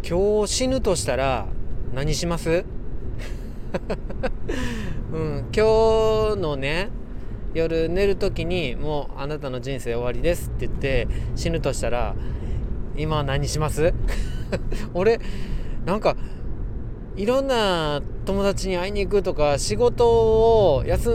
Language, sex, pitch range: Japanese, male, 125-200 Hz